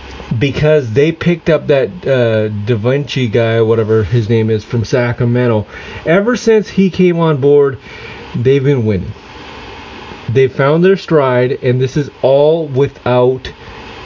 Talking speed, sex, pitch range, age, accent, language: 140 wpm, male, 115-150 Hz, 30-49, American, English